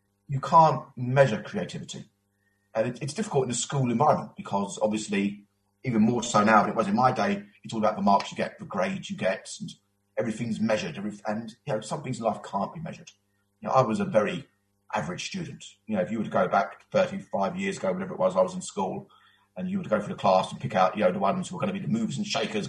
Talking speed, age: 260 wpm, 30-49